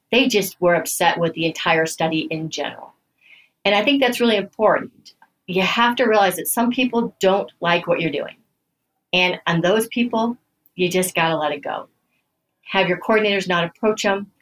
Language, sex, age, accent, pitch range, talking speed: English, female, 40-59, American, 165-215 Hz, 185 wpm